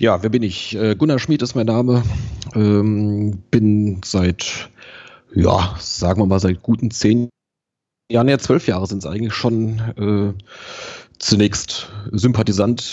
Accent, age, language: German, 30-49, German